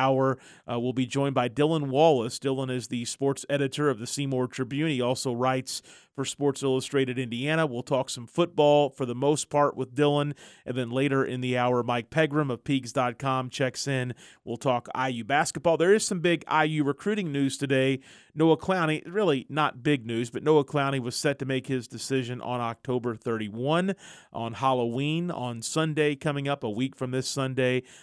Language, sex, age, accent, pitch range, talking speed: English, male, 40-59, American, 120-145 Hz, 185 wpm